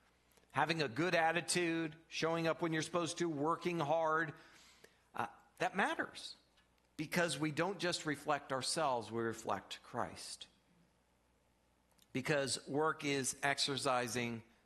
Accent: American